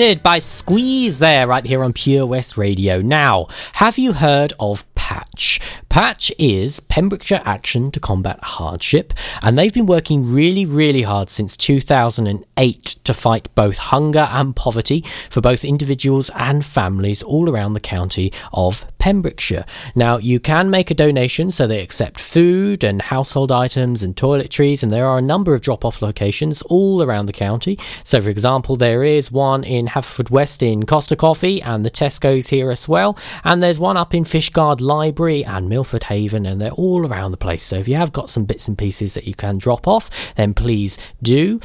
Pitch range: 115-160 Hz